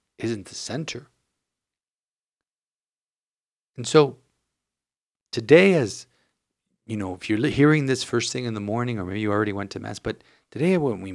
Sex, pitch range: male, 110-140 Hz